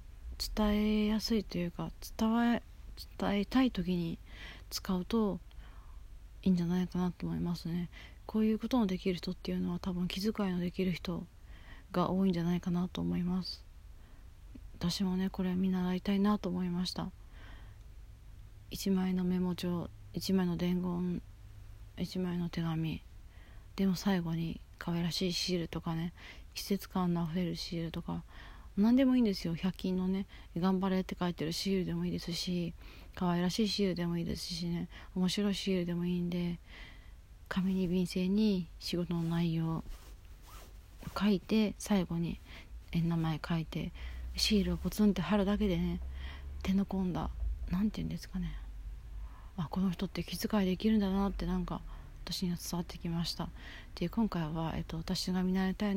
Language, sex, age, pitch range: Japanese, female, 40-59, 155-190 Hz